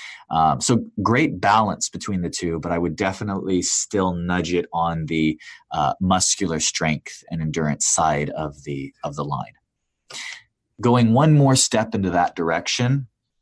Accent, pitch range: American, 80-100 Hz